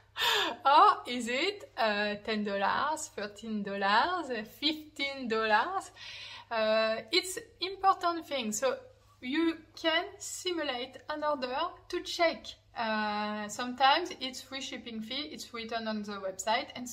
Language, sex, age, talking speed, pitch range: English, female, 20-39, 105 wpm, 225-275 Hz